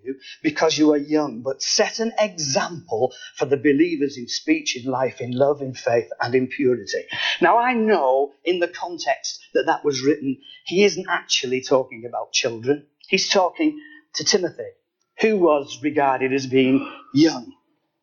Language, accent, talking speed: English, British, 160 wpm